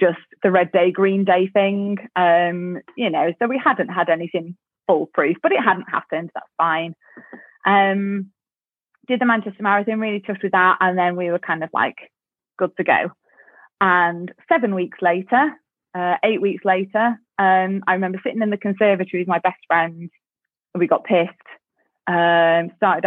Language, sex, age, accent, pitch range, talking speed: English, female, 30-49, British, 180-215 Hz, 170 wpm